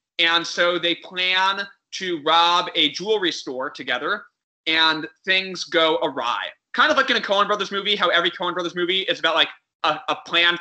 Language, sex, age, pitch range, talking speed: English, male, 20-39, 155-190 Hz, 185 wpm